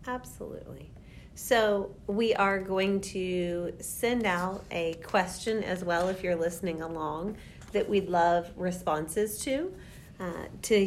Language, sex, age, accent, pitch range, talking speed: English, female, 40-59, American, 160-205 Hz, 125 wpm